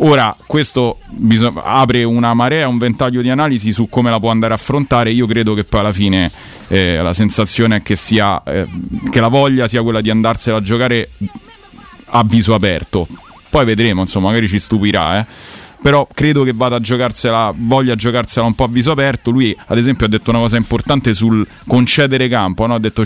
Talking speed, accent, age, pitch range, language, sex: 200 wpm, native, 30-49, 110-125 Hz, Italian, male